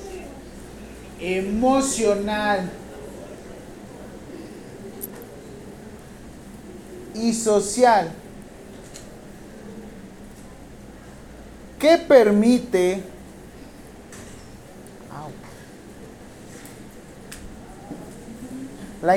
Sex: male